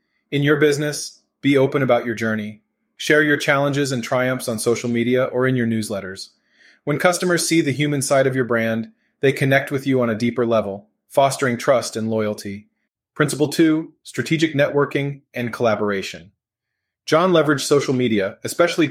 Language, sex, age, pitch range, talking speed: English, male, 30-49, 115-160 Hz, 165 wpm